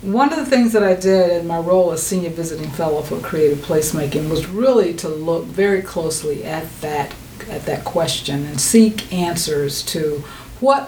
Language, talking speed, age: English, 180 wpm, 50-69